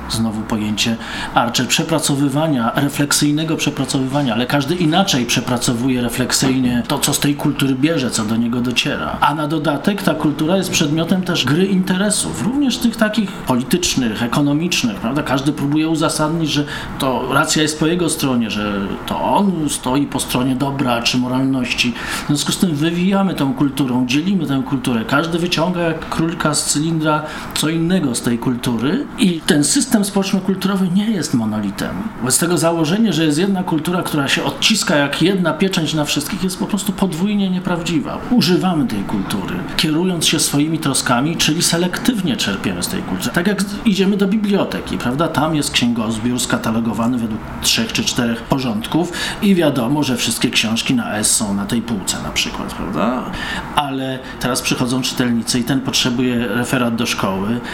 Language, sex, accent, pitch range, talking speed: Polish, male, native, 125-175 Hz, 165 wpm